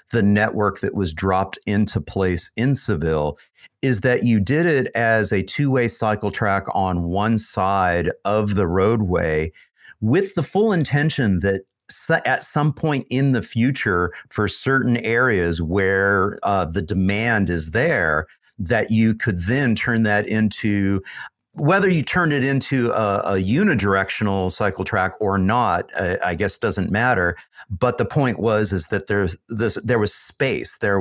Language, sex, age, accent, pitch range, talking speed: English, male, 50-69, American, 95-120 Hz, 155 wpm